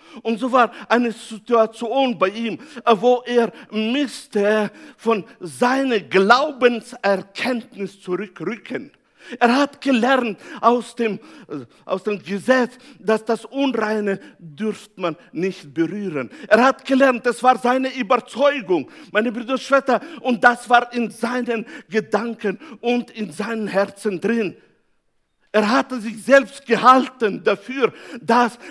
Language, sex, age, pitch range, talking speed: German, male, 60-79, 200-245 Hz, 120 wpm